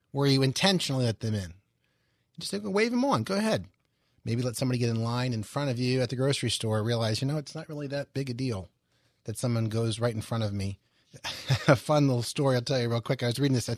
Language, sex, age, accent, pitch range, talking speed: English, male, 30-49, American, 110-130 Hz, 255 wpm